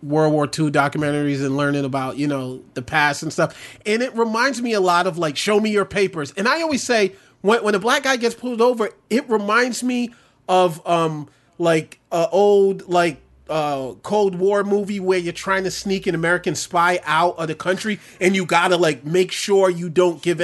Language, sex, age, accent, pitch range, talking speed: English, male, 30-49, American, 160-210 Hz, 210 wpm